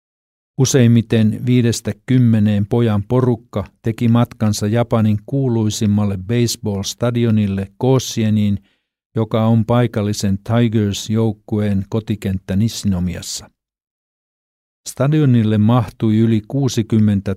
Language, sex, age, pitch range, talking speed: Finnish, male, 50-69, 100-120 Hz, 75 wpm